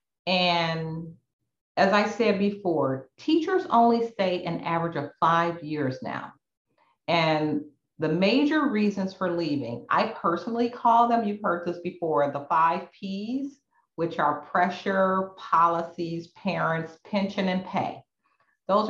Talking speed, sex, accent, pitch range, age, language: 125 wpm, female, American, 155-225 Hz, 40-59, English